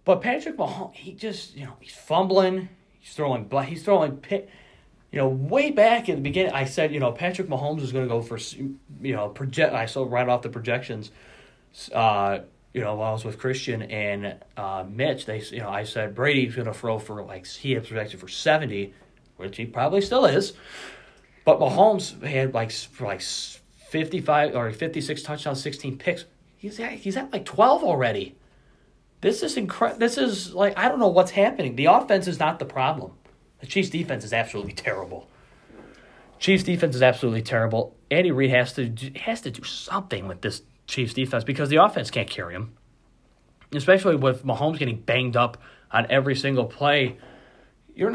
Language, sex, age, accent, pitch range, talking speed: English, male, 30-49, American, 115-170 Hz, 190 wpm